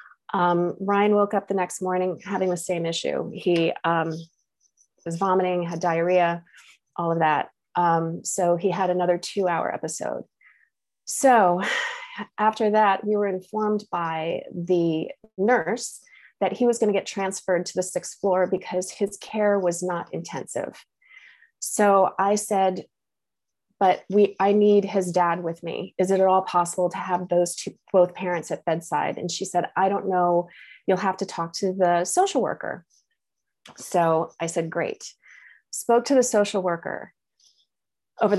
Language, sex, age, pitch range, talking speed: English, female, 30-49, 175-205 Hz, 160 wpm